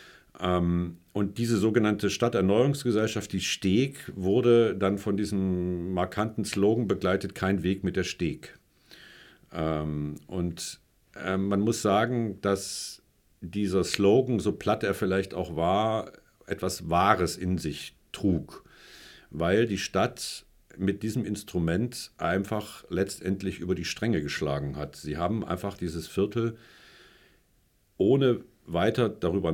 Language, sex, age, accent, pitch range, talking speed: German, male, 50-69, German, 90-110 Hz, 115 wpm